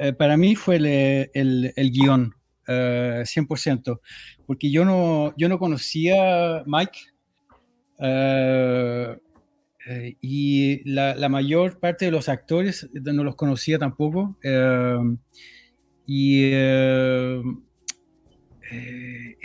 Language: Spanish